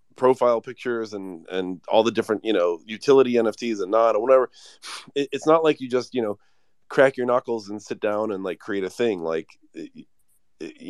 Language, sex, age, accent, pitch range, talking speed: English, male, 30-49, American, 95-125 Hz, 200 wpm